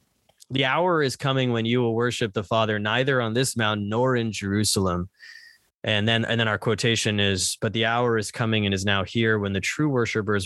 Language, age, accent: English, 20-39, American